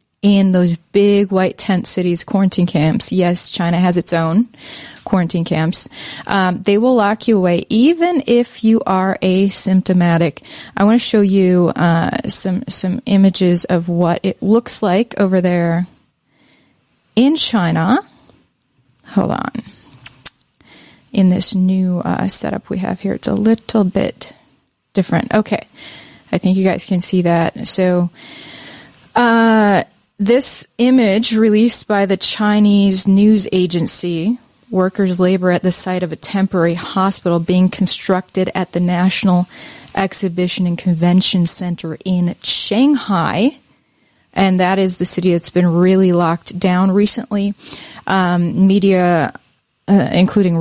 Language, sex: English, female